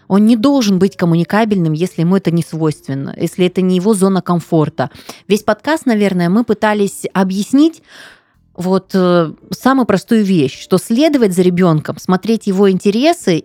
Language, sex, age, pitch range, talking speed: Russian, female, 20-39, 170-215 Hz, 150 wpm